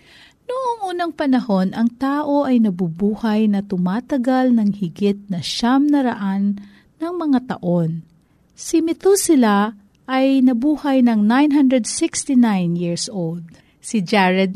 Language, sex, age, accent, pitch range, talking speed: Filipino, female, 40-59, native, 195-285 Hz, 110 wpm